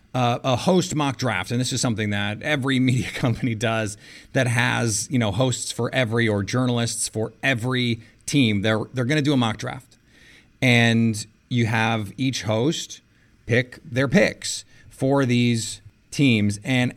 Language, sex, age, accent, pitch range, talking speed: English, male, 30-49, American, 110-135 Hz, 160 wpm